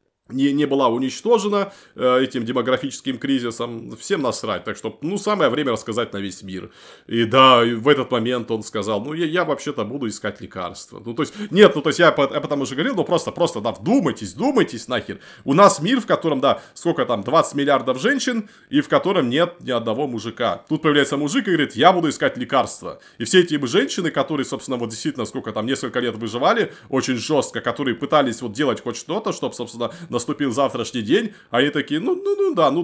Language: Russian